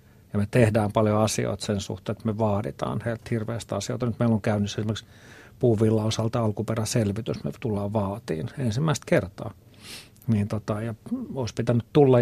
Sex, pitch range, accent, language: male, 110-125 Hz, native, Finnish